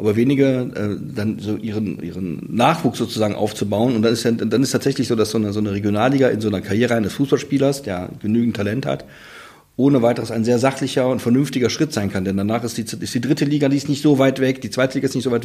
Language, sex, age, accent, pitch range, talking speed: German, male, 40-59, German, 110-140 Hz, 250 wpm